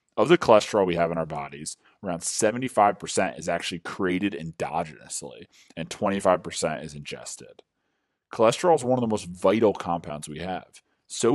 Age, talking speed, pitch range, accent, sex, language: 30-49, 155 wpm, 85-105 Hz, American, male, English